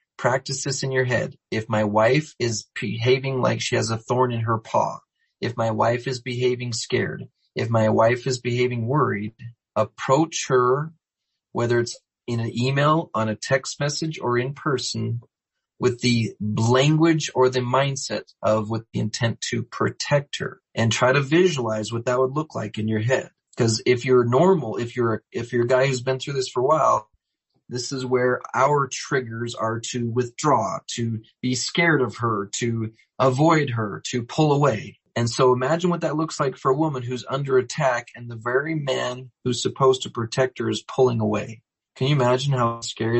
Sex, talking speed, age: male, 185 wpm, 30-49